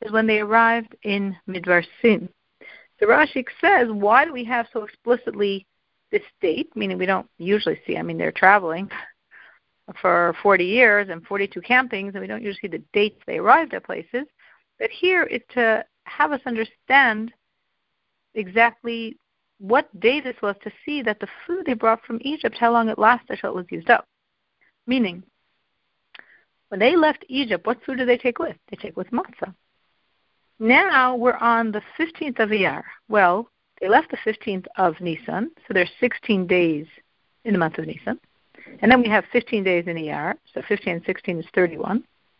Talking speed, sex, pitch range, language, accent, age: 175 wpm, female, 195-255 Hz, English, American, 50-69